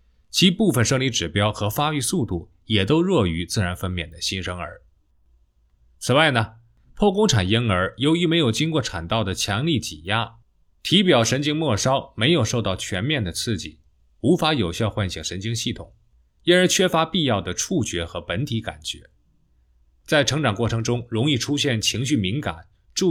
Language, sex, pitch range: Chinese, male, 85-135 Hz